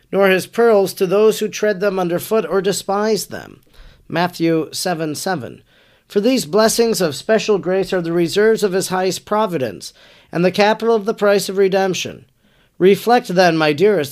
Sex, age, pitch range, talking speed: male, 40-59, 160-205 Hz, 170 wpm